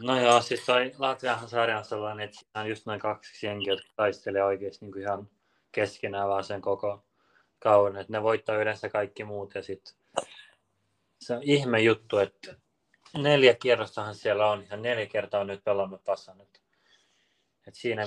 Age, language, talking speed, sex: 20-39, Finnish, 165 wpm, male